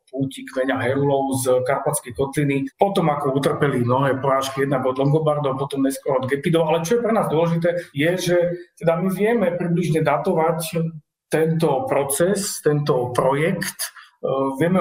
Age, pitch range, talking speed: 40-59, 145-175 Hz, 150 wpm